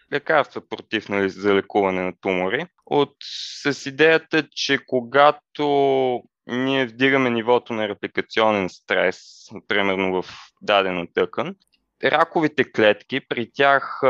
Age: 20-39